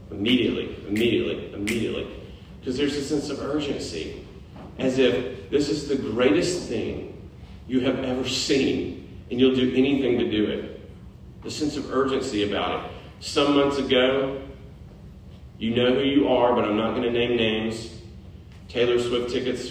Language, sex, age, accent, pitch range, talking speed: English, male, 40-59, American, 100-135 Hz, 155 wpm